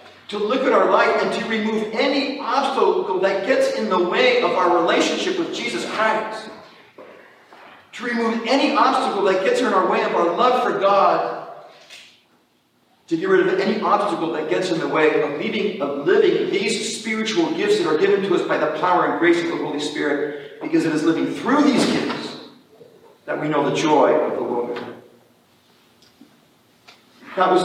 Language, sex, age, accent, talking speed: English, male, 40-59, American, 180 wpm